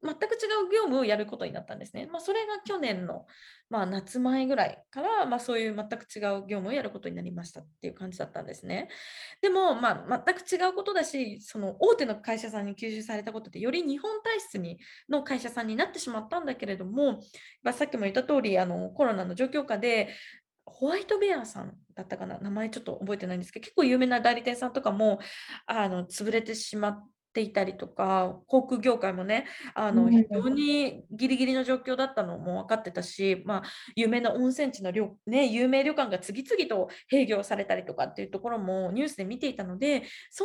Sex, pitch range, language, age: female, 205-285 Hz, Japanese, 20-39